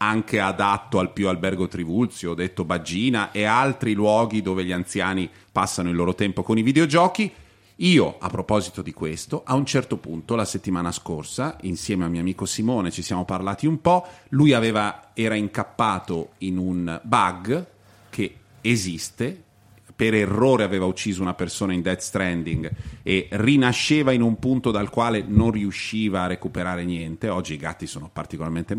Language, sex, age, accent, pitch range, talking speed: Italian, male, 40-59, native, 90-115 Hz, 165 wpm